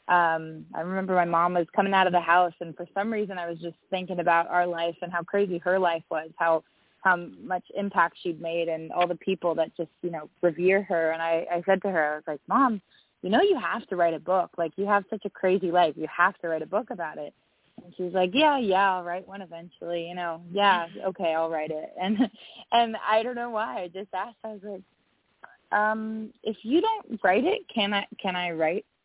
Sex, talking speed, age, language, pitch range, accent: female, 240 wpm, 20-39, English, 170-205 Hz, American